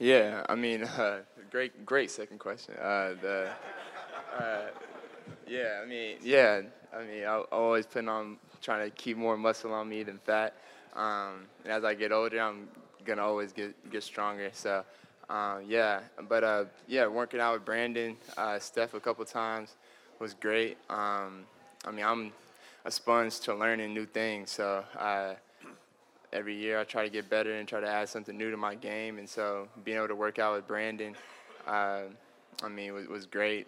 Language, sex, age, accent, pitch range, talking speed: English, male, 20-39, American, 100-110 Hz, 190 wpm